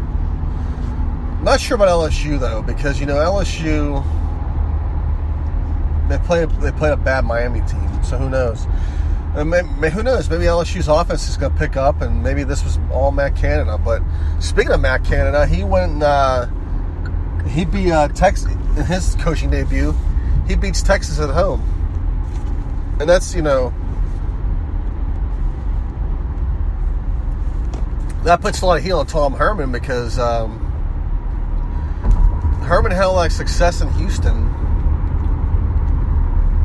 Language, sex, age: English, male, 30-49